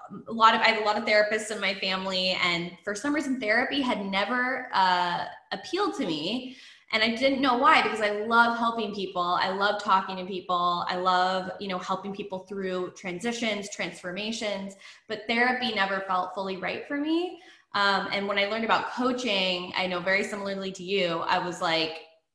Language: English